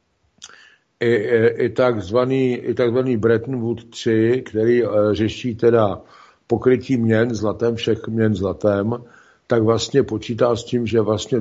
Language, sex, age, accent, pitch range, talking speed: Czech, male, 60-79, native, 105-115 Hz, 135 wpm